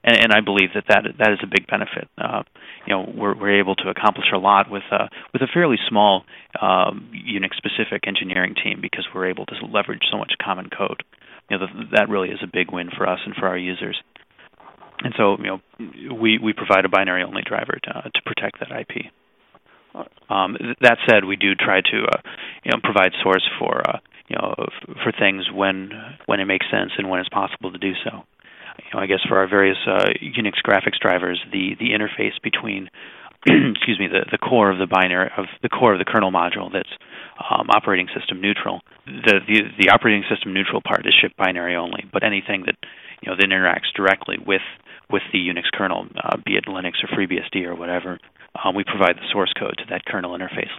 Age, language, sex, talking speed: 30-49, English, male, 215 wpm